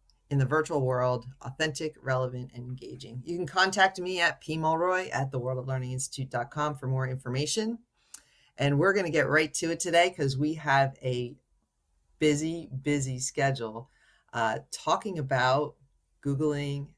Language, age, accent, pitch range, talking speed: English, 40-59, American, 125-150 Hz, 150 wpm